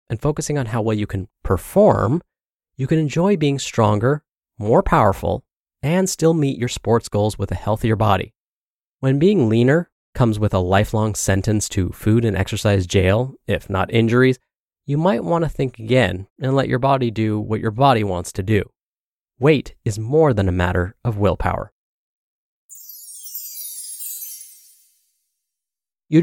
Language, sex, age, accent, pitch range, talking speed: English, male, 20-39, American, 105-135 Hz, 155 wpm